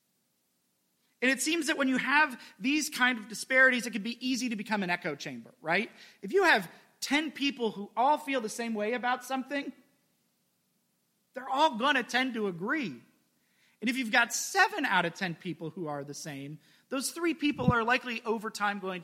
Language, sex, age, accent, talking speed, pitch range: English, male, 30-49, American, 195 wpm, 180-260 Hz